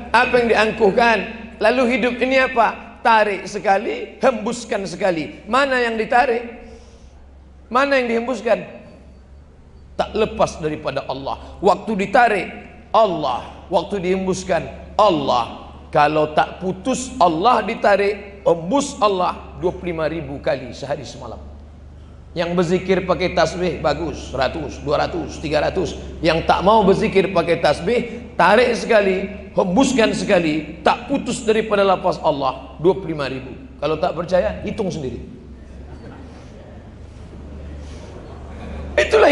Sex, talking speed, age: male, 105 wpm, 40-59